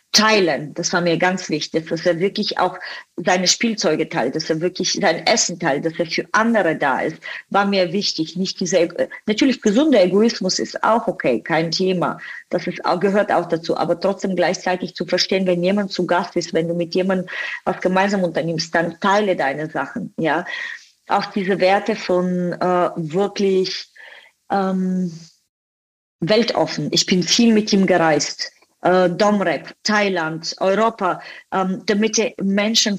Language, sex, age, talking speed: German, female, 40-59, 160 wpm